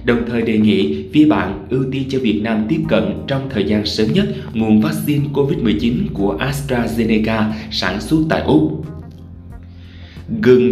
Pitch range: 100-125 Hz